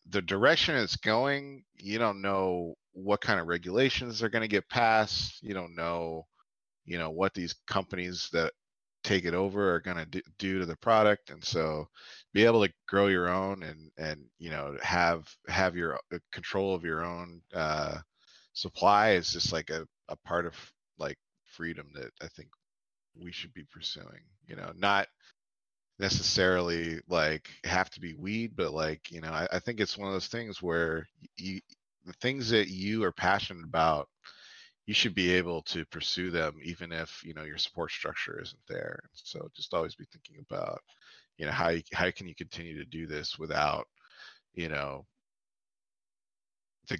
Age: 30-49